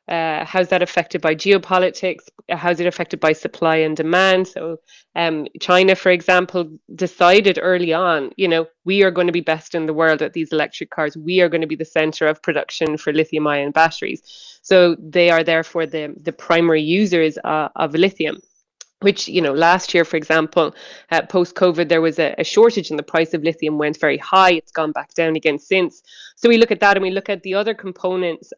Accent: Irish